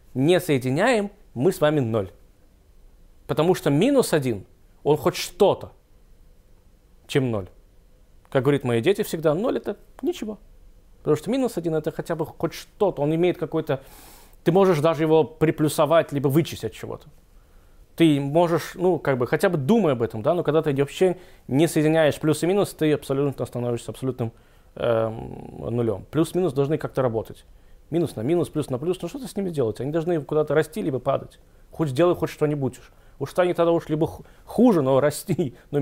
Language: Russian